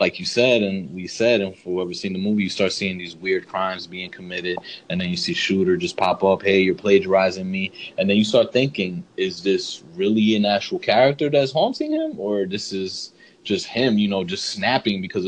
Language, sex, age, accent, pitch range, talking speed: English, male, 20-39, American, 95-120 Hz, 220 wpm